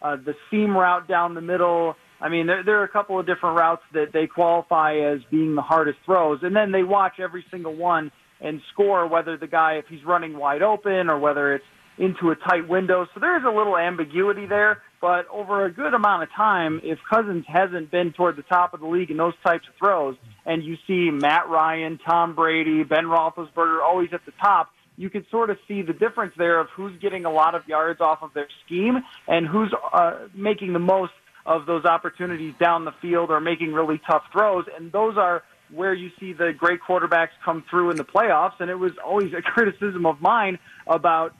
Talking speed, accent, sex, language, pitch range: 215 wpm, American, male, English, 160-195 Hz